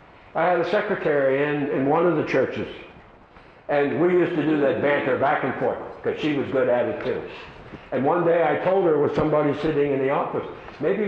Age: 60-79